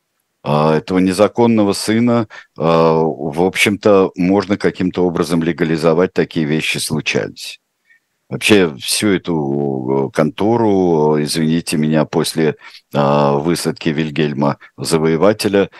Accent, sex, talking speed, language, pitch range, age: native, male, 85 wpm, Russian, 80-115 Hz, 50-69